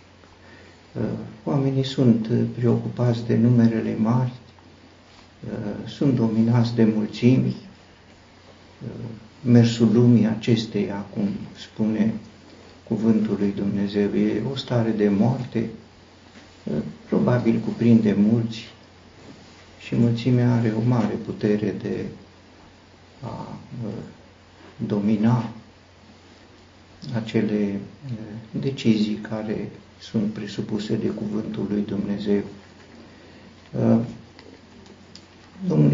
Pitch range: 100-115 Hz